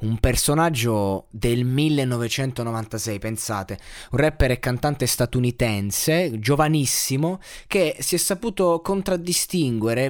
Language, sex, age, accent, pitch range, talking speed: Italian, male, 20-39, native, 115-155 Hz, 95 wpm